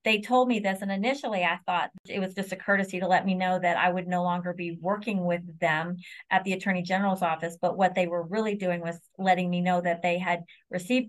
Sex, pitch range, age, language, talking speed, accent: female, 180-200 Hz, 40-59, English, 245 wpm, American